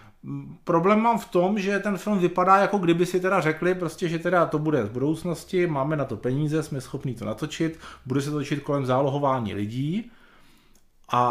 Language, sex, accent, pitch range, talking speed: Czech, male, native, 140-185 Hz, 190 wpm